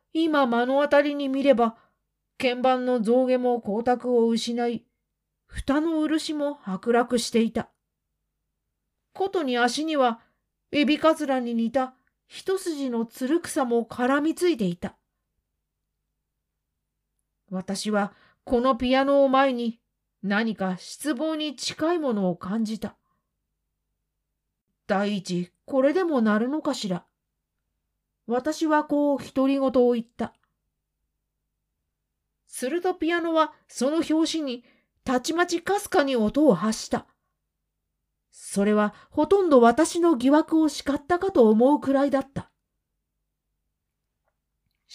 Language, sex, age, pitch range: Japanese, female, 40-59, 200-290 Hz